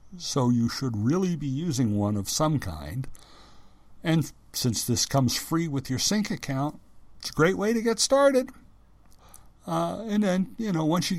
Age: 60-79